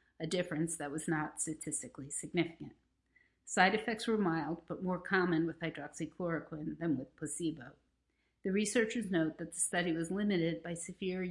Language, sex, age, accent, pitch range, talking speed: English, female, 50-69, American, 155-190 Hz, 155 wpm